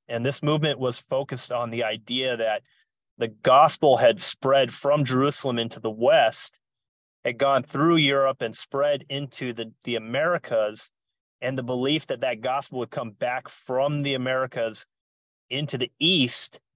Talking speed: 155 wpm